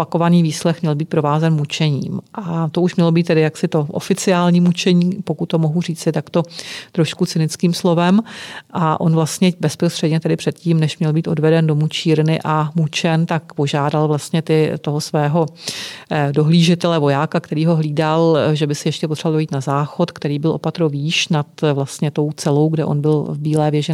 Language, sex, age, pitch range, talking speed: Czech, female, 40-59, 155-170 Hz, 180 wpm